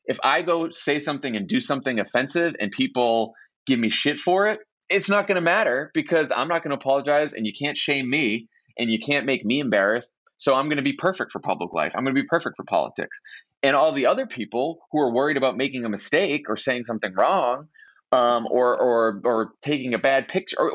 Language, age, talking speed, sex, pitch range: English, 20-39, 230 wpm, male, 110-170 Hz